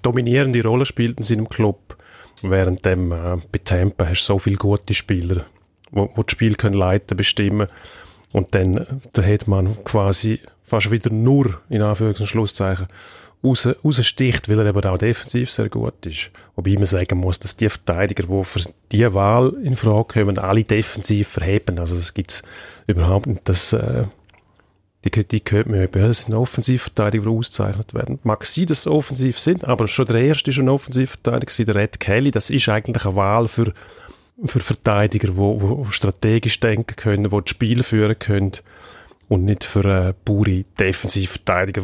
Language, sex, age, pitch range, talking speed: German, male, 30-49, 100-115 Hz, 170 wpm